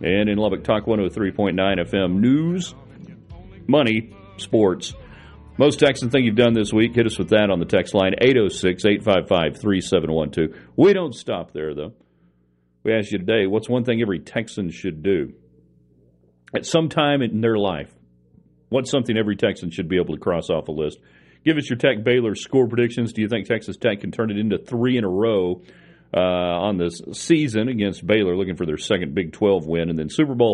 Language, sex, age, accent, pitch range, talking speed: English, male, 40-59, American, 90-125 Hz, 190 wpm